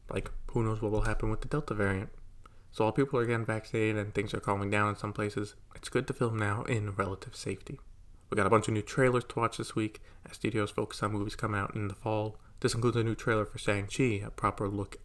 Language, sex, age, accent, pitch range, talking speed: English, male, 20-39, American, 100-120 Hz, 250 wpm